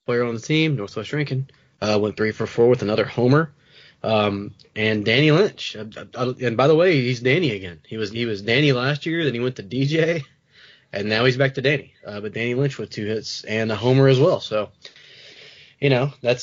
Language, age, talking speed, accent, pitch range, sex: English, 20-39, 225 wpm, American, 110-140 Hz, male